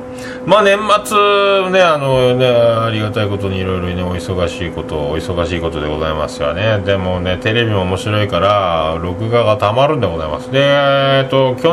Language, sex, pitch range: Japanese, male, 110-160 Hz